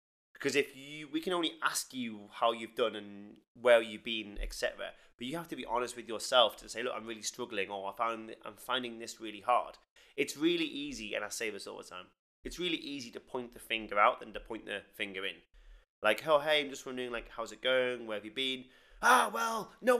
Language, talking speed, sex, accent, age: English, 245 wpm, male, British, 20-39